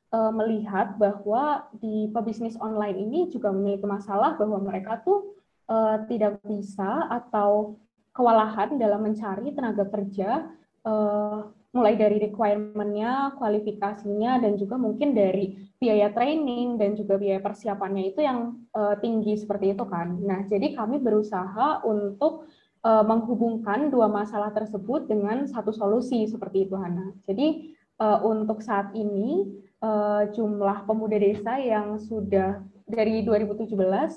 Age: 20-39